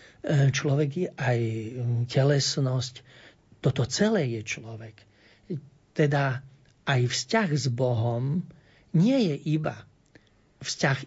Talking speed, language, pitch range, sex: 90 wpm, Slovak, 125-165 Hz, male